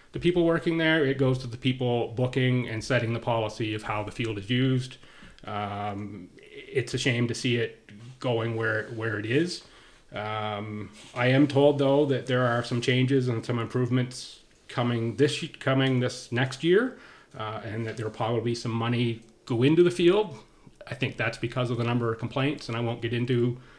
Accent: American